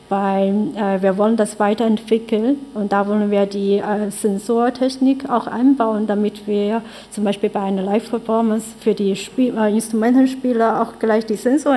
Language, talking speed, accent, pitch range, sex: German, 160 wpm, German, 205-235 Hz, female